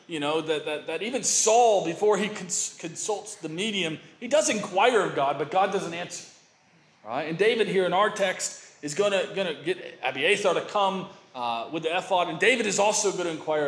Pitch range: 170-210 Hz